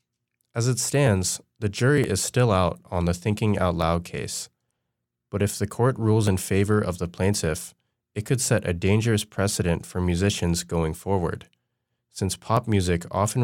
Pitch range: 90-115 Hz